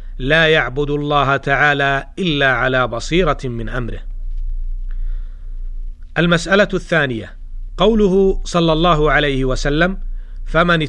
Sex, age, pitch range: male, 40-59, 130-165 Hz